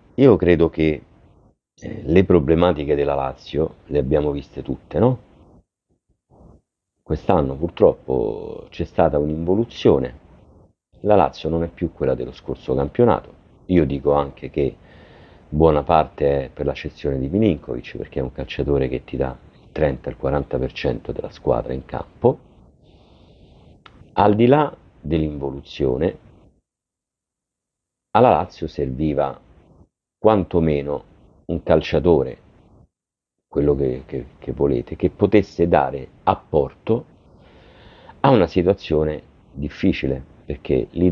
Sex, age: male, 50-69